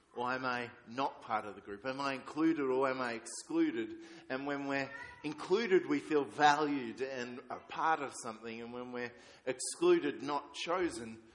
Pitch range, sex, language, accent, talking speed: 125-170 Hz, male, English, Australian, 175 wpm